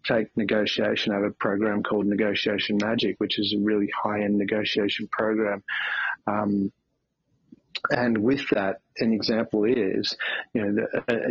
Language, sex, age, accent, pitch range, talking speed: English, male, 30-49, Australian, 105-115 Hz, 145 wpm